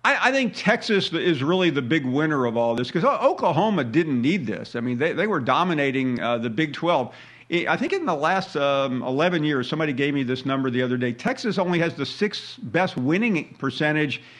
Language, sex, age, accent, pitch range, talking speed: English, male, 50-69, American, 135-190 Hz, 210 wpm